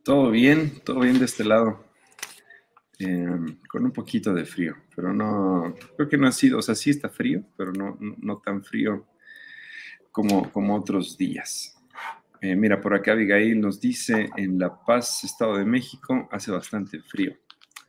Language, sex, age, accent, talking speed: Spanish, male, 50-69, Mexican, 170 wpm